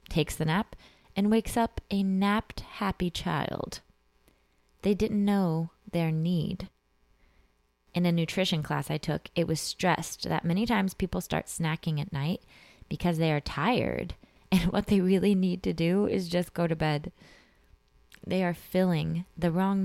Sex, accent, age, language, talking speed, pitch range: female, American, 20-39, English, 160 wpm, 150-185 Hz